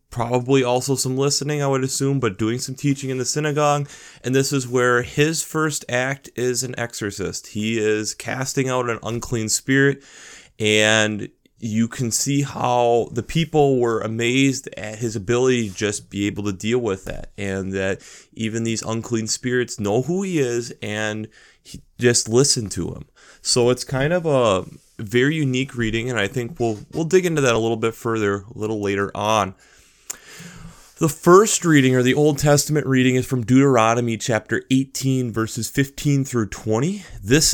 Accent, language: American, English